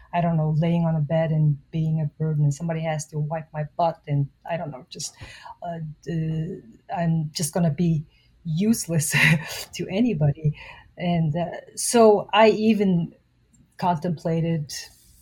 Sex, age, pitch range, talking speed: female, 30-49, 155-170 Hz, 155 wpm